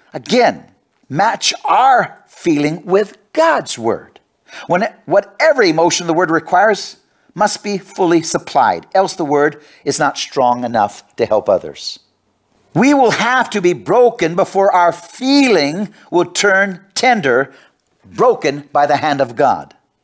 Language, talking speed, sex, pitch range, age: English, 140 wpm, male, 130-205 Hz, 50-69